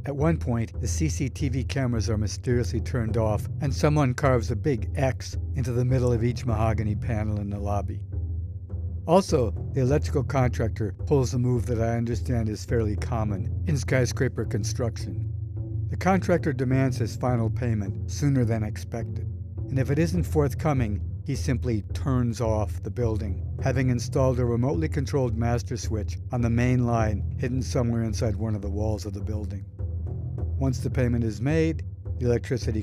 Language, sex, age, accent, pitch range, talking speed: English, male, 60-79, American, 100-125 Hz, 165 wpm